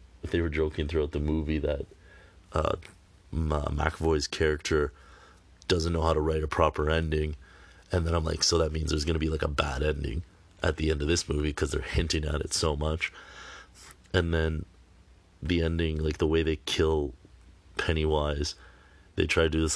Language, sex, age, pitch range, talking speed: English, male, 30-49, 75-85 Hz, 185 wpm